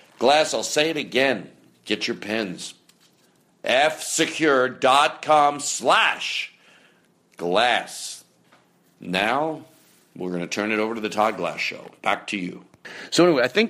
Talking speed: 130 wpm